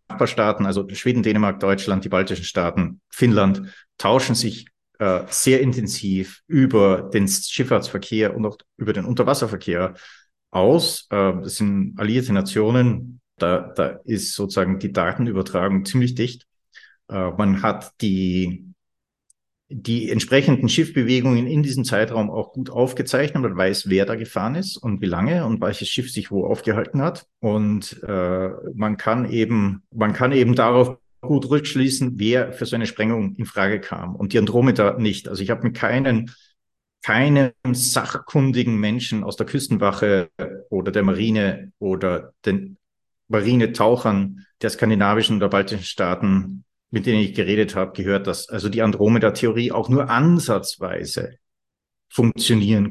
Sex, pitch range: male, 100-125 Hz